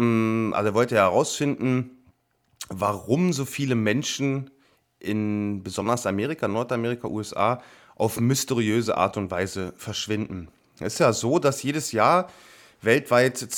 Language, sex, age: German, male, 30-49